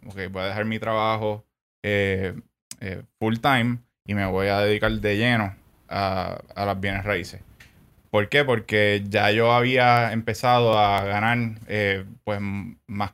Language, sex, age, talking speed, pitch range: Spanish, male, 20-39, 145 wpm, 100-115 Hz